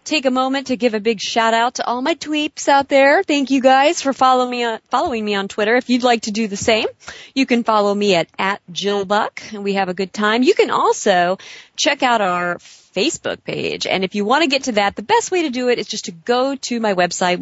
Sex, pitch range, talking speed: female, 195-250 Hz, 255 wpm